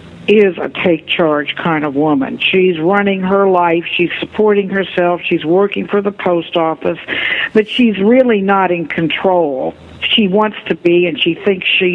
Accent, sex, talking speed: American, female, 170 wpm